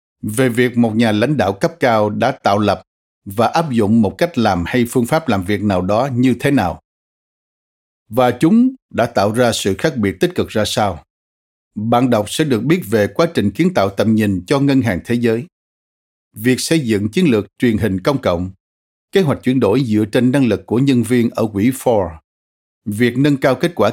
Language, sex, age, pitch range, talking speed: Vietnamese, male, 60-79, 100-135 Hz, 210 wpm